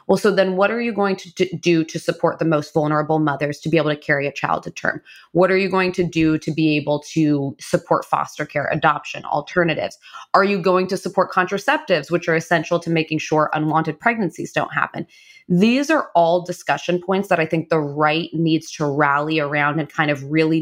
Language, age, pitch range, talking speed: English, 20-39, 155-185 Hz, 210 wpm